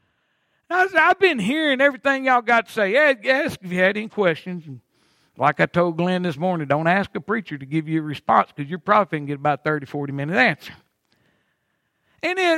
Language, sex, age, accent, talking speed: English, male, 60-79, American, 200 wpm